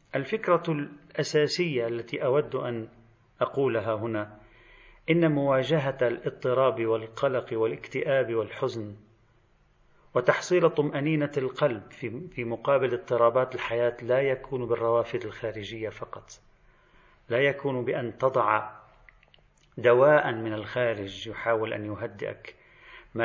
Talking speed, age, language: 95 wpm, 40-59, Arabic